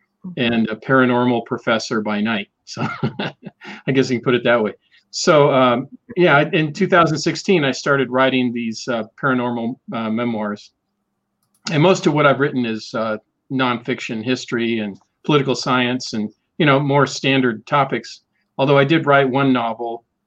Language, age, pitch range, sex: English, 40-59, 115-140 Hz, male